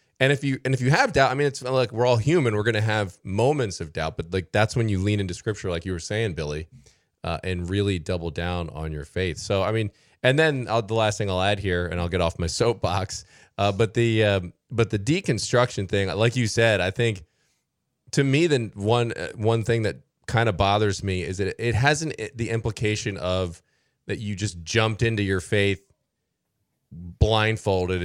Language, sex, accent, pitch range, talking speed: English, male, American, 95-115 Hz, 220 wpm